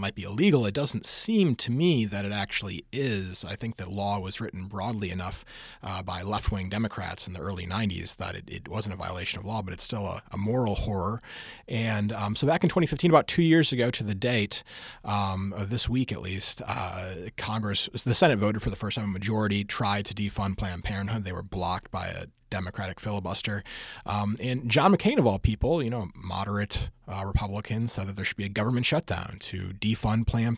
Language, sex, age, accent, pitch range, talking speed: English, male, 30-49, American, 95-115 Hz, 210 wpm